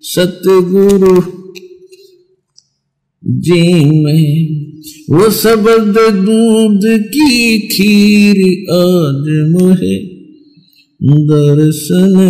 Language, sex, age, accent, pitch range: Hindi, male, 50-69, native, 155-200 Hz